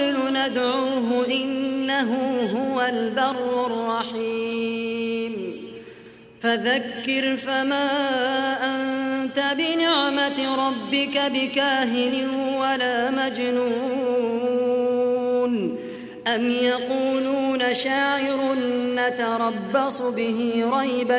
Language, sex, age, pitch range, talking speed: Arabic, female, 30-49, 245-270 Hz, 55 wpm